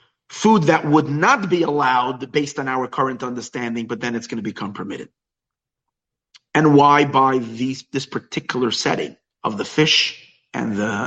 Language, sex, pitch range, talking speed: English, male, 120-155 Hz, 165 wpm